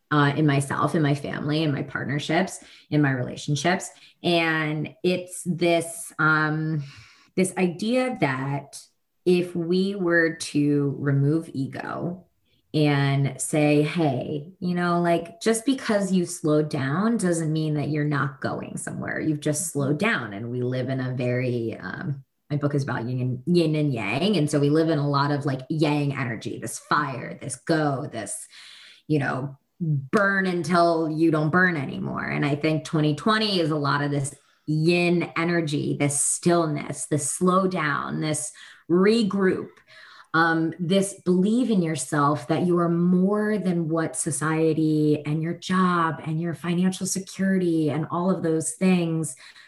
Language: English